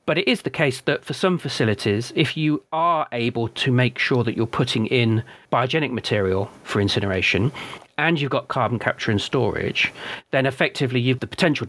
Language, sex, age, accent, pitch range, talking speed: English, male, 40-59, British, 115-140 Hz, 190 wpm